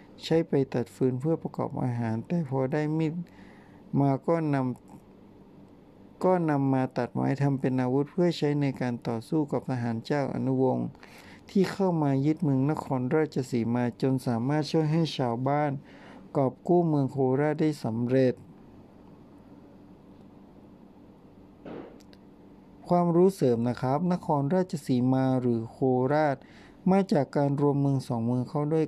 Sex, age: male, 60-79